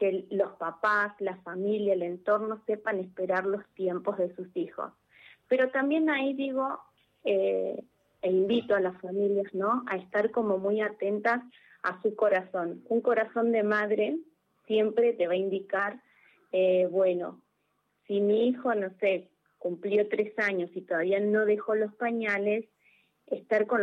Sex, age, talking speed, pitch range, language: female, 20-39, 150 wpm, 185-225 Hz, Spanish